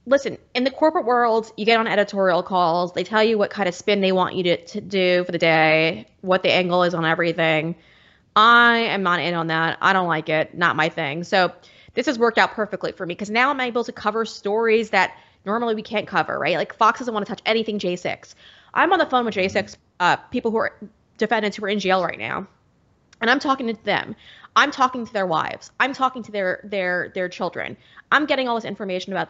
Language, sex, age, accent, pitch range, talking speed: English, female, 20-39, American, 180-235 Hz, 235 wpm